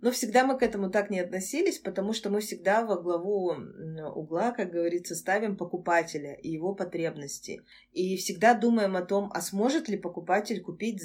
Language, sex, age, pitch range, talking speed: Russian, female, 20-39, 175-205 Hz, 175 wpm